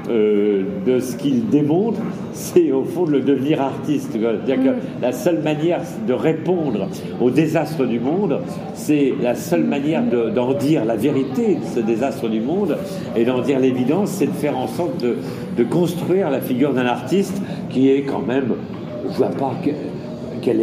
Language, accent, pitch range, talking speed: French, French, 115-155 Hz, 175 wpm